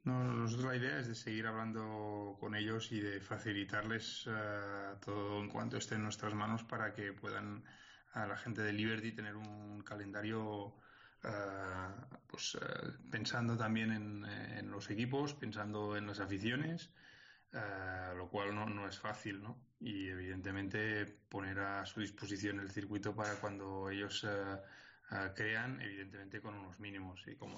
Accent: Spanish